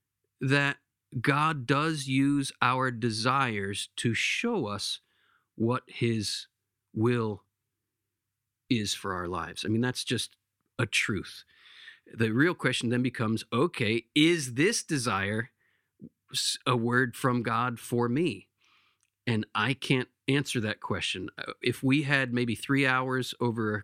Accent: American